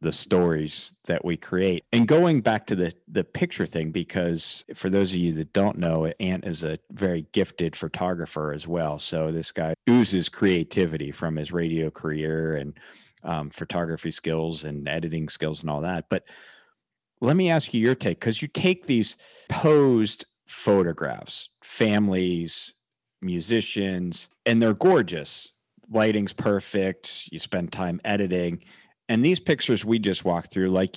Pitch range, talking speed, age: 85-115 Hz, 155 wpm, 40-59